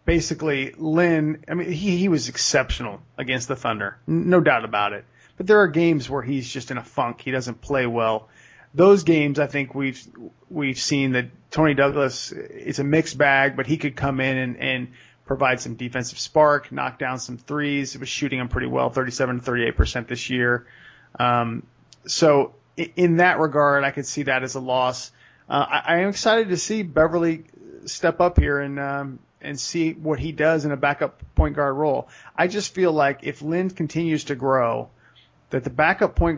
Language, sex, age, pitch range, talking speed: English, male, 30-49, 130-160 Hz, 195 wpm